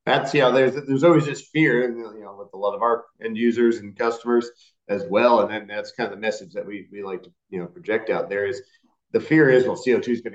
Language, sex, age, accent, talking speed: English, male, 40-59, American, 260 wpm